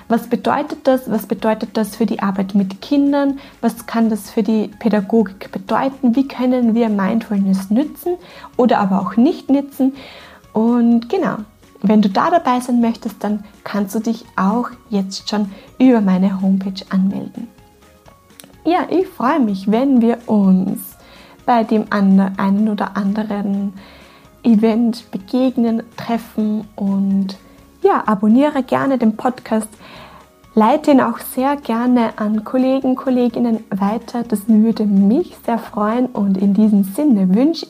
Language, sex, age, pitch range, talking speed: German, female, 20-39, 205-250 Hz, 140 wpm